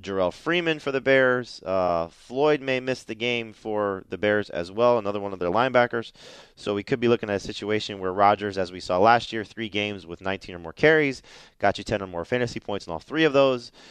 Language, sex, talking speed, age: English, male, 235 wpm, 30-49